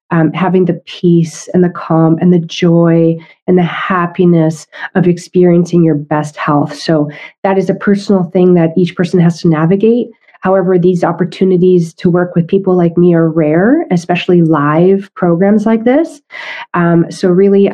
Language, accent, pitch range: English, American, 165-205 Hz